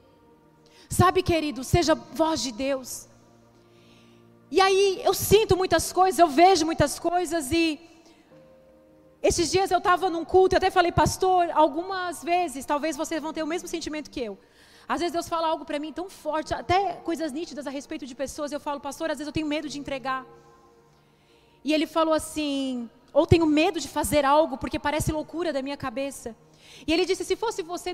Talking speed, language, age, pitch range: 185 wpm, Portuguese, 30-49, 270-335 Hz